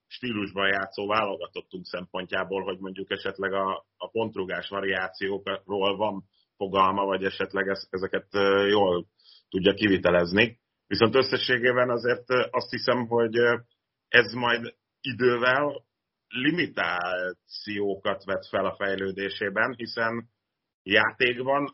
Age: 30-49